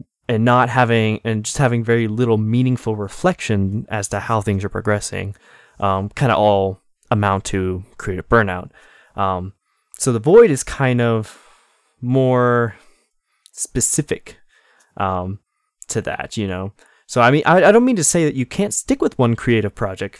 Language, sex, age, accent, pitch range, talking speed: English, male, 20-39, American, 105-135 Hz, 165 wpm